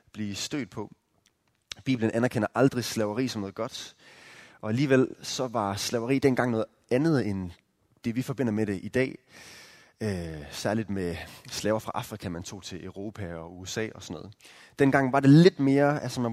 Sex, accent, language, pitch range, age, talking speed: male, native, Danish, 105-135 Hz, 20-39, 170 wpm